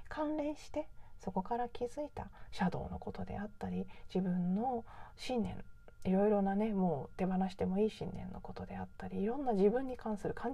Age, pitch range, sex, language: 40-59, 170-235 Hz, female, Japanese